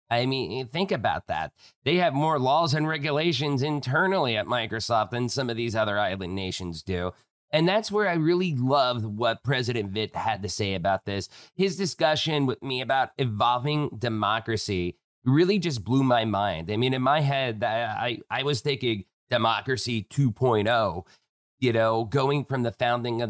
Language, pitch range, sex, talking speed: English, 105-140 Hz, male, 170 wpm